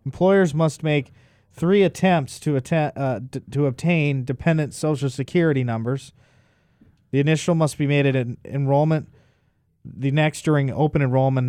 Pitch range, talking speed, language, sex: 125-145 Hz, 145 wpm, English, male